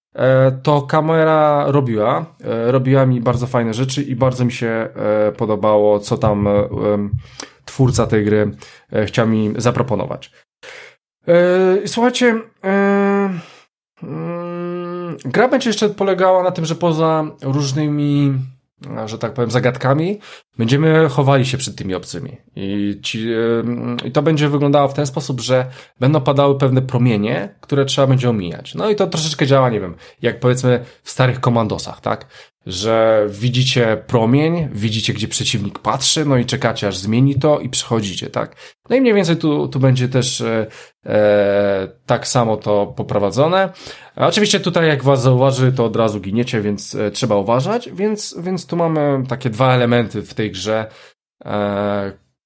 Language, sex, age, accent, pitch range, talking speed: Polish, male, 20-39, native, 110-150 Hz, 140 wpm